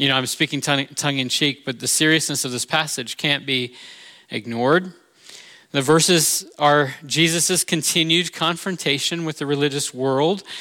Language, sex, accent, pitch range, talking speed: English, male, American, 140-180 Hz, 135 wpm